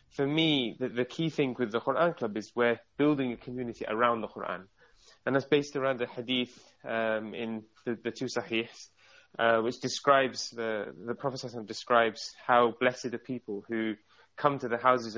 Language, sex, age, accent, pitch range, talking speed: English, male, 20-39, British, 110-125 Hz, 180 wpm